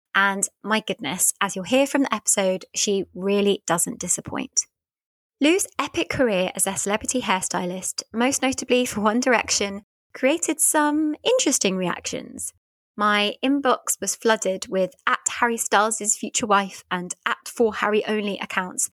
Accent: British